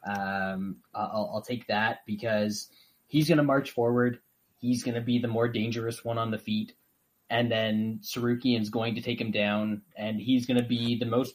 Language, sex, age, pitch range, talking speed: English, male, 20-39, 105-120 Hz, 200 wpm